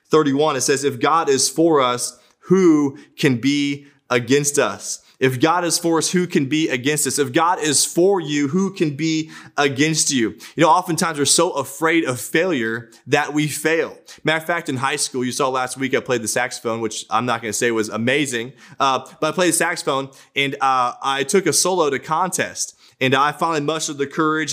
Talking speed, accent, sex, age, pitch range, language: 210 wpm, American, male, 20-39, 130-155 Hz, English